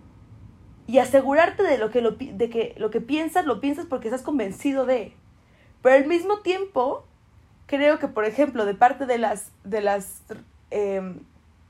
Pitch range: 190-265 Hz